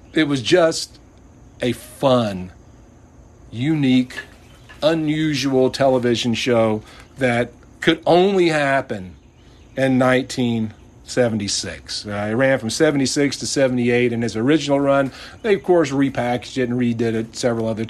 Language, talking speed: English, 120 wpm